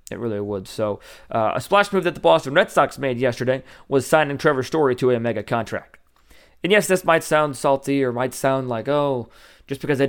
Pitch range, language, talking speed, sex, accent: 120-145 Hz, English, 220 wpm, male, American